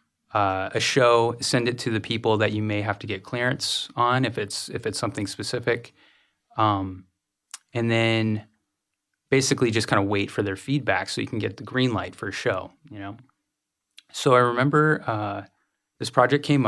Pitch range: 100-125 Hz